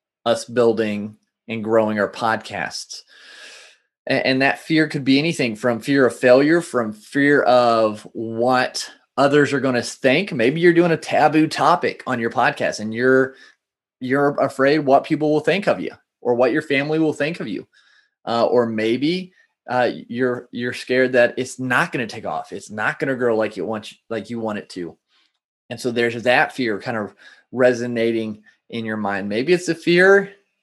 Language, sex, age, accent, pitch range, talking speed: English, male, 20-39, American, 120-150 Hz, 185 wpm